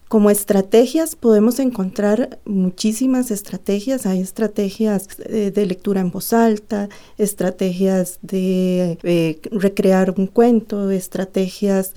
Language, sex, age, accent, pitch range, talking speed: Spanish, female, 30-49, Colombian, 195-230 Hz, 105 wpm